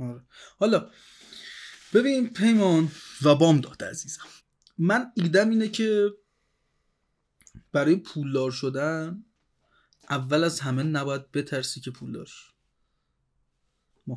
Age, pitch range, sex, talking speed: 30-49, 135-170 Hz, male, 95 wpm